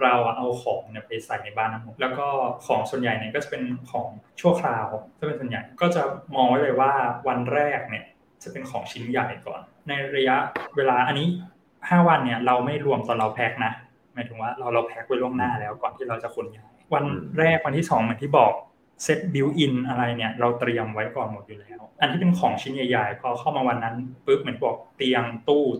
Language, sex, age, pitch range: Thai, male, 20-39, 120-150 Hz